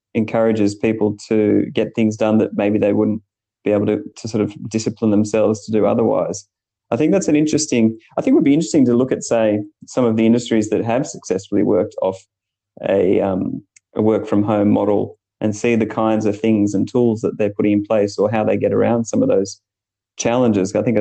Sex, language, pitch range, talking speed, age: male, English, 105-115 Hz, 215 wpm, 30-49